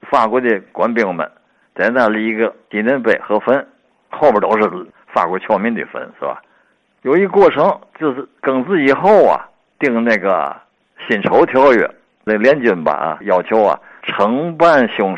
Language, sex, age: Chinese, male, 60-79